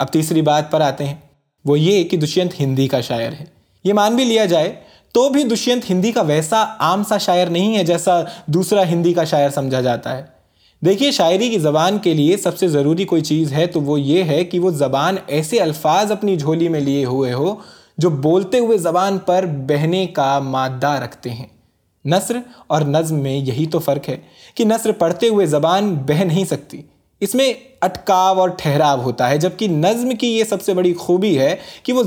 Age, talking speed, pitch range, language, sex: 20-39, 205 wpm, 145-195 Hz, Urdu, male